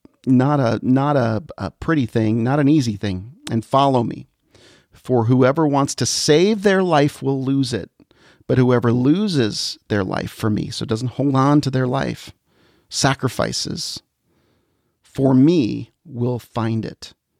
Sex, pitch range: male, 115-140 Hz